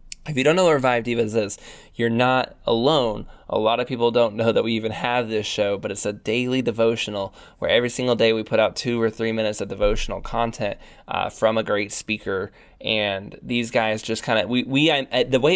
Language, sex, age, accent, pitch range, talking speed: English, male, 20-39, American, 110-120 Hz, 225 wpm